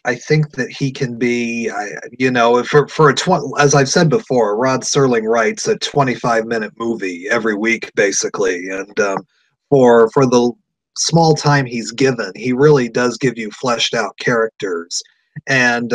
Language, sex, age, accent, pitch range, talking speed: English, male, 30-49, American, 115-145 Hz, 160 wpm